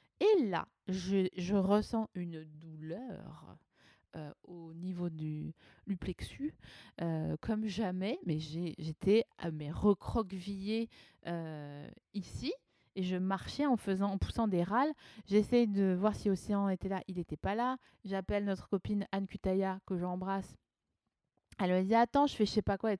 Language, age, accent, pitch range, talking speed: French, 20-39, French, 175-220 Hz, 160 wpm